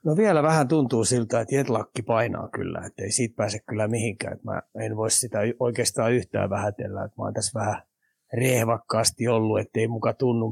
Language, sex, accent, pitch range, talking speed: Finnish, male, native, 115-130 Hz, 170 wpm